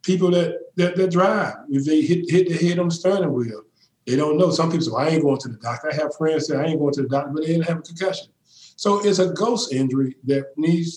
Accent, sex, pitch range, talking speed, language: American, male, 135-165 Hz, 280 wpm, English